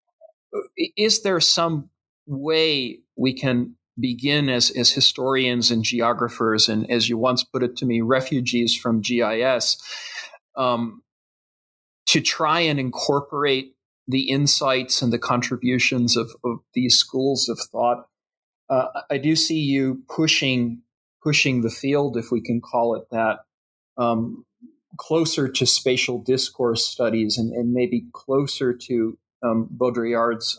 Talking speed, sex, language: 130 wpm, male, English